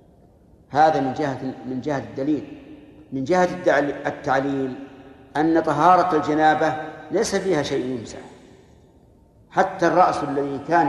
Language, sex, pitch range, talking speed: Arabic, male, 140-170 Hz, 110 wpm